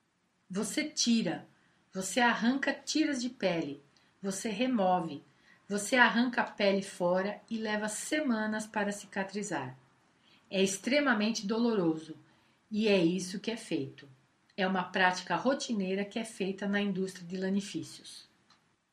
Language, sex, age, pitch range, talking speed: Portuguese, female, 50-69, 185-240 Hz, 125 wpm